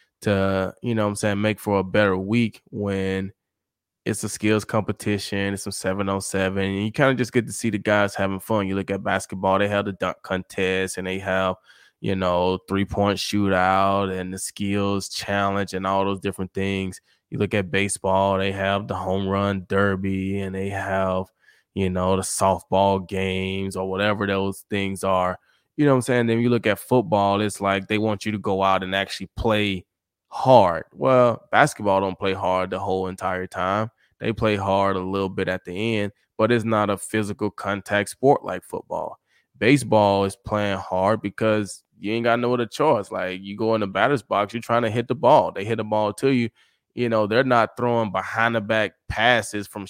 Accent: American